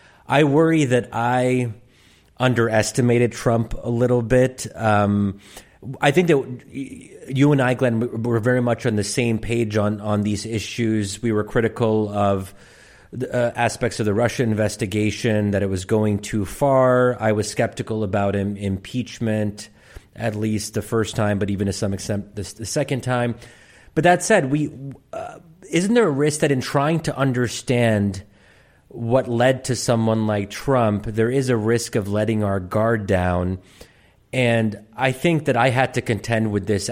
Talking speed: 165 wpm